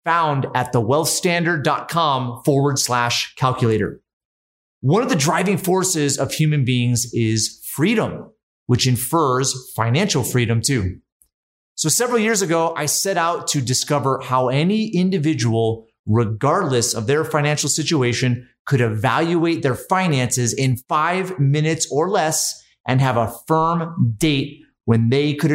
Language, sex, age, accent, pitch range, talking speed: English, male, 30-49, American, 120-155 Hz, 130 wpm